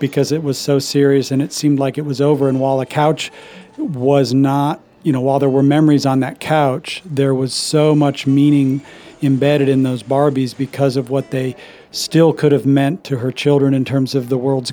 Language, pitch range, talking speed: English, 135-150 Hz, 210 wpm